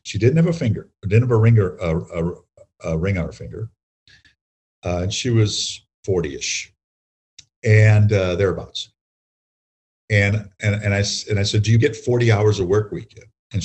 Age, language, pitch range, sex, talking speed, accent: 50-69, English, 90-115 Hz, male, 180 wpm, American